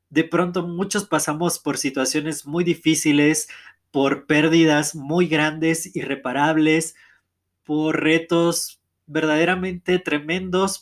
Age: 20-39